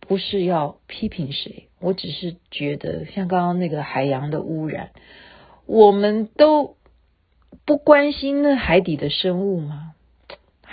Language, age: Chinese, 40-59